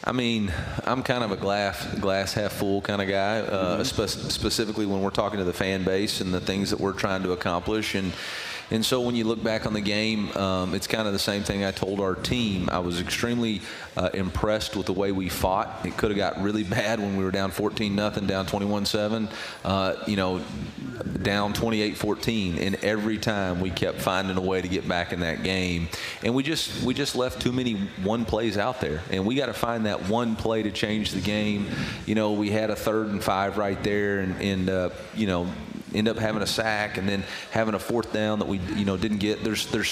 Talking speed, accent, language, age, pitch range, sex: 225 wpm, American, English, 30-49, 95-110 Hz, male